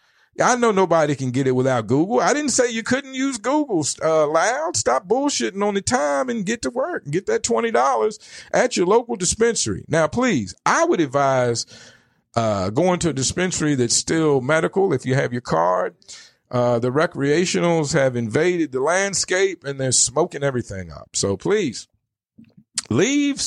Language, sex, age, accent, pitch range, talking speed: English, male, 50-69, American, 130-195 Hz, 170 wpm